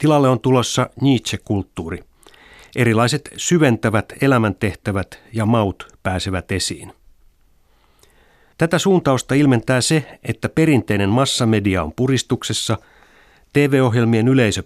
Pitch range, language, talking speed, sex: 100-130 Hz, Finnish, 90 wpm, male